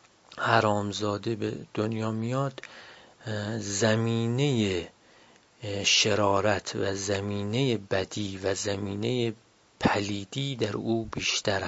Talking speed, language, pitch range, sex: 75 wpm, Persian, 100-115 Hz, male